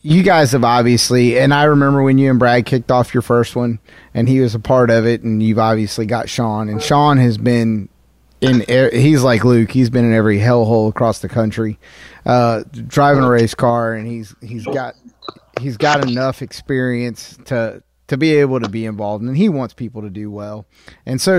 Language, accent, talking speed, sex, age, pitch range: English, American, 210 wpm, male, 30-49, 110-130 Hz